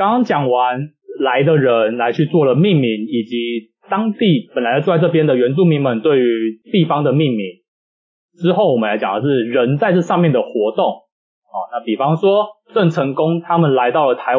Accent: native